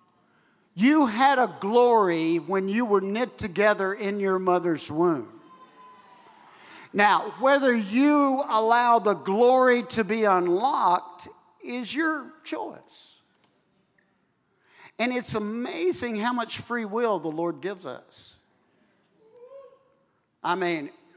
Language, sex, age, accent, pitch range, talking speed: English, male, 60-79, American, 190-245 Hz, 110 wpm